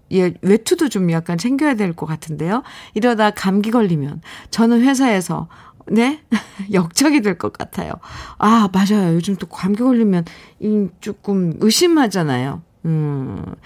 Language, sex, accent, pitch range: Korean, female, native, 190-260 Hz